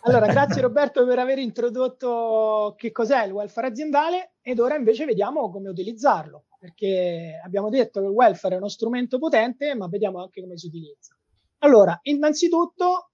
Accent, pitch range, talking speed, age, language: native, 180-250 Hz, 160 wpm, 30-49, Italian